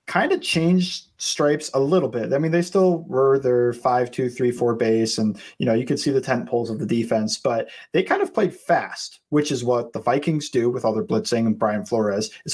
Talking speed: 240 wpm